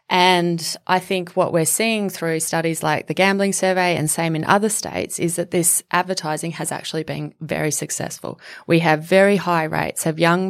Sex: female